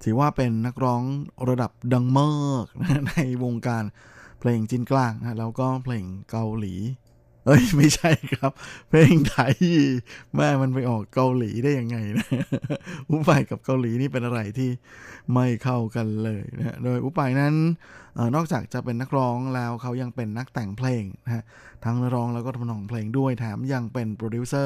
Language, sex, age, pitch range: Thai, male, 20-39, 115-135 Hz